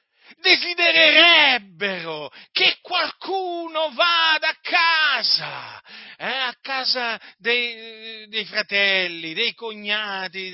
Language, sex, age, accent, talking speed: Italian, male, 50-69, native, 75 wpm